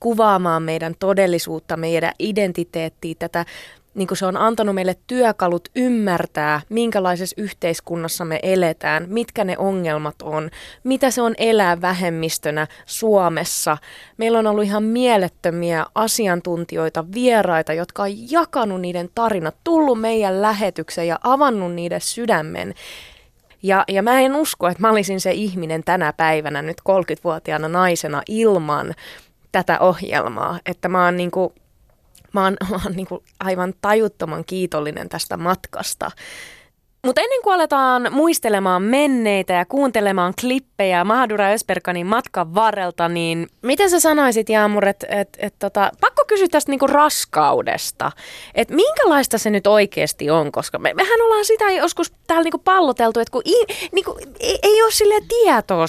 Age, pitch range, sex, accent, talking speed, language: 20-39, 175-250 Hz, female, native, 135 wpm, Finnish